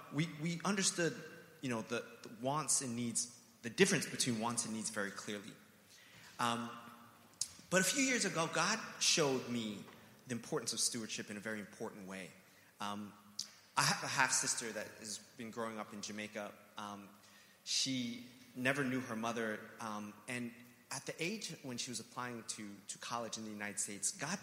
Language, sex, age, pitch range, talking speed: English, male, 30-49, 110-140 Hz, 175 wpm